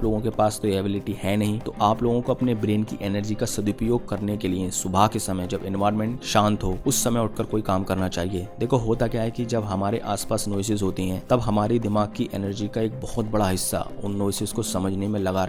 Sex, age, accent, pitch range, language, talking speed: male, 20-39, native, 95-115 Hz, Hindi, 235 wpm